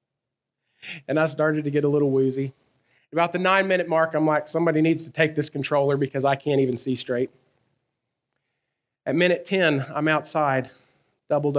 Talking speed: 165 wpm